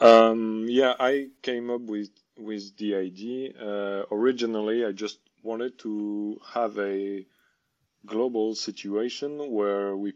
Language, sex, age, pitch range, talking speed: English, male, 20-39, 95-110 Hz, 125 wpm